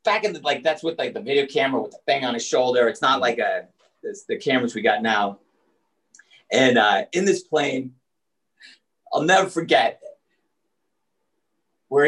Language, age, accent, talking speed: English, 30-49, American, 165 wpm